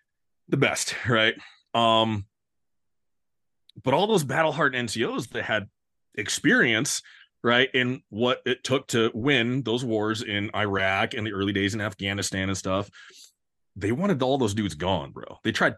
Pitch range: 110-135 Hz